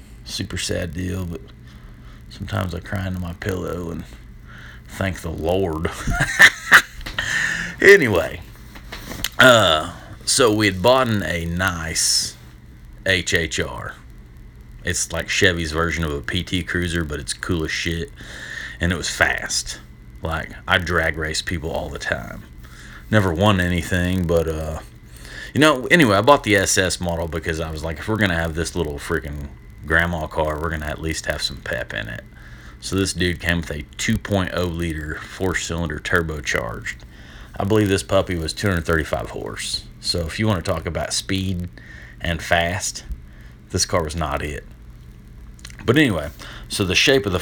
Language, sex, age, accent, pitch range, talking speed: English, male, 30-49, American, 80-95 Hz, 155 wpm